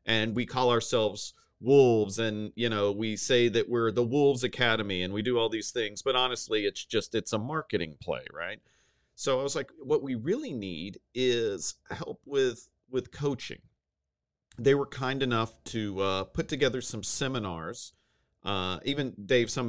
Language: English